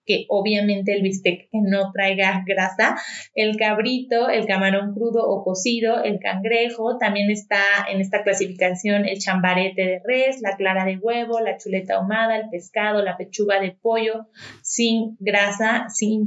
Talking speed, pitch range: 150 wpm, 195-230 Hz